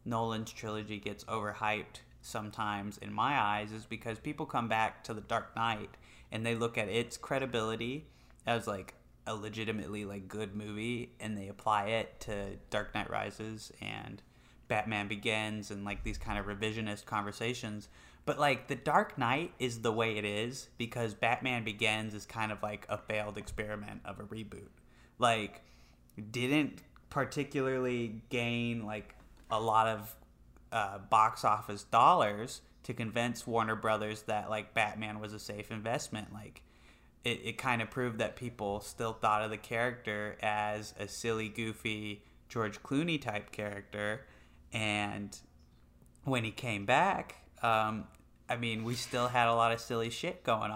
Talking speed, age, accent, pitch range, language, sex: 155 wpm, 20-39, American, 105-115 Hz, English, male